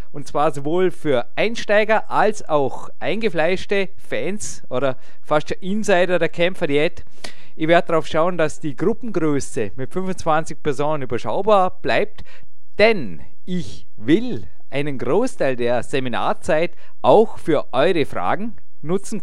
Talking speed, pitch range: 125 wpm, 130-170 Hz